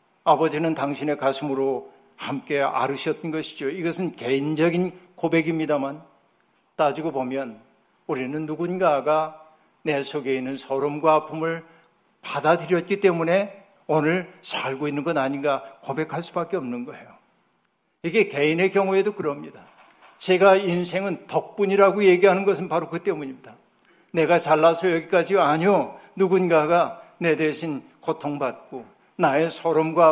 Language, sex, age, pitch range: Korean, male, 60-79, 155-195 Hz